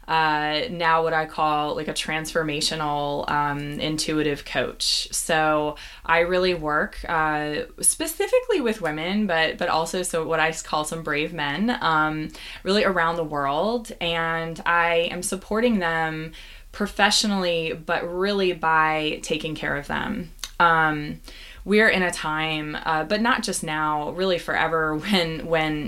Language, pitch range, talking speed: English, 155-180 Hz, 140 wpm